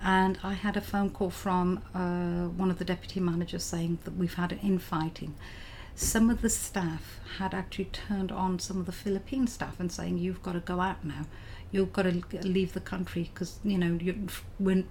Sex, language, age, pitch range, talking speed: female, English, 50-69, 170-200 Hz, 200 wpm